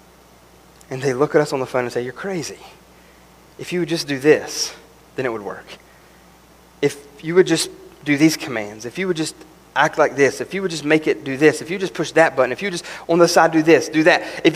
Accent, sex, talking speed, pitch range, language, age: American, male, 250 wpm, 160-265 Hz, English, 30-49